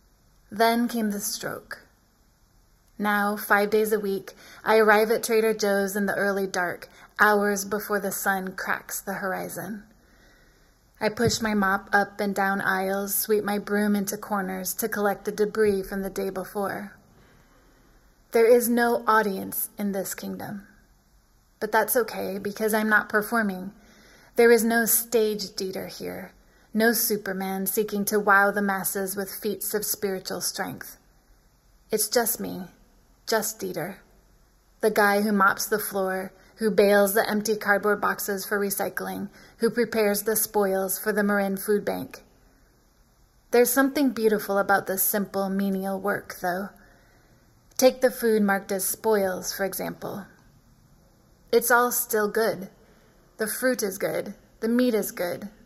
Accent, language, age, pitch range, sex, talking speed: American, English, 20-39, 195-220 Hz, female, 145 wpm